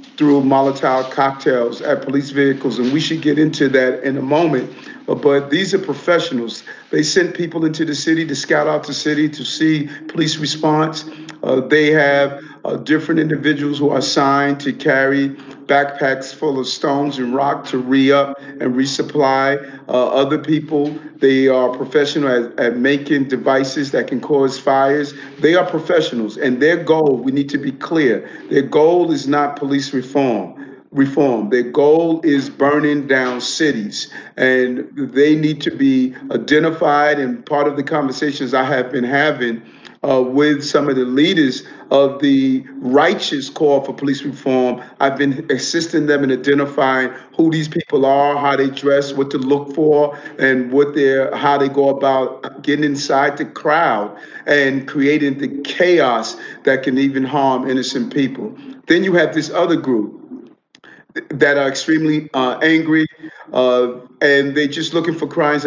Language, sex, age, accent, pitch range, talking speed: English, male, 40-59, American, 135-155 Hz, 165 wpm